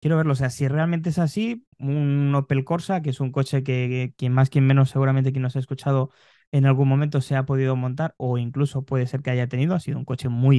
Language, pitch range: Spanish, 130-145 Hz